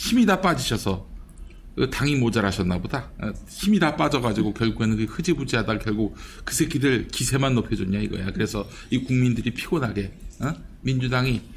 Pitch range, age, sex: 105-140 Hz, 50-69, male